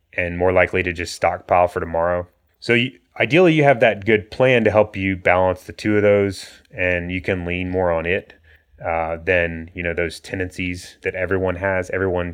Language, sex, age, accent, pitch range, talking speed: English, male, 30-49, American, 90-105 Hz, 200 wpm